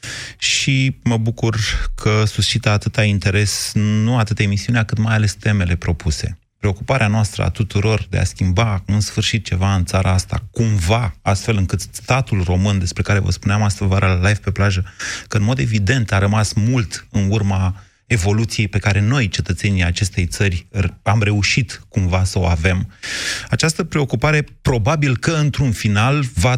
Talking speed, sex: 165 wpm, male